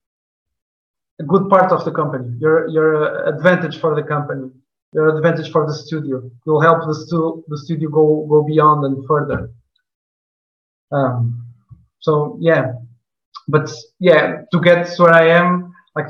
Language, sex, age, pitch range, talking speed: English, male, 20-39, 150-165 Hz, 150 wpm